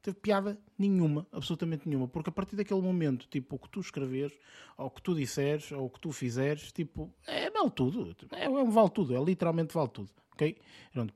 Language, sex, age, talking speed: Portuguese, male, 20-39, 210 wpm